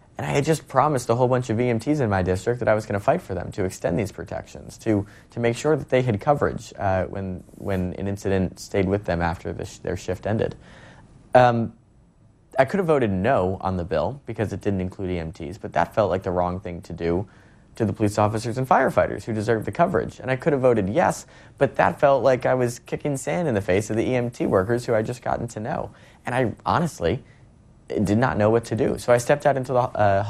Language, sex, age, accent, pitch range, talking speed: English, male, 20-39, American, 95-115 Hz, 245 wpm